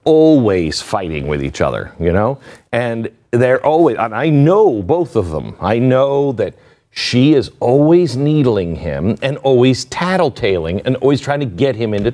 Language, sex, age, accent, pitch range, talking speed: English, male, 50-69, American, 105-150 Hz, 170 wpm